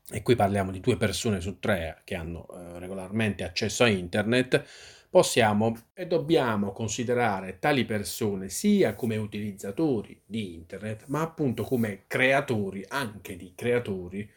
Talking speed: 140 wpm